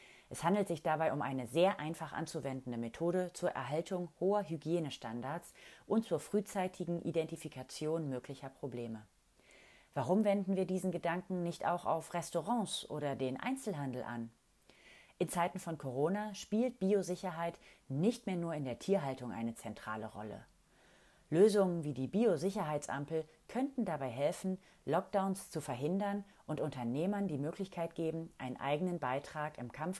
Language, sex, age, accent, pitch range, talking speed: German, female, 30-49, German, 140-190 Hz, 135 wpm